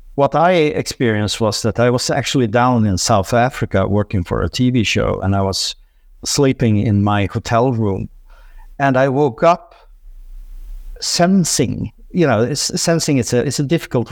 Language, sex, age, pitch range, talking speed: English, male, 50-69, 100-135 Hz, 160 wpm